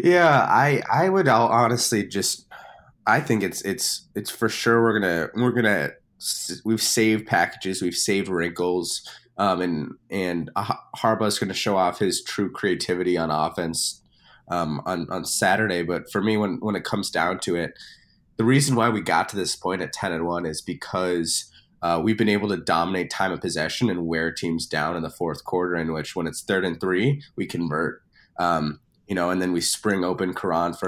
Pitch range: 85-110 Hz